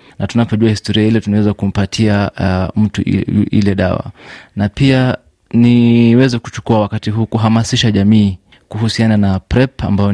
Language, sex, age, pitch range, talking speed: Swahili, male, 30-49, 100-110 Hz, 130 wpm